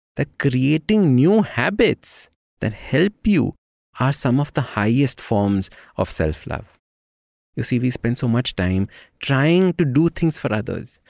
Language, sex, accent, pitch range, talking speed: English, male, Indian, 120-170 Hz, 150 wpm